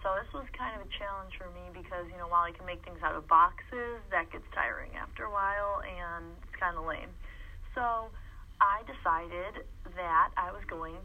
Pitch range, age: 175-230 Hz, 30-49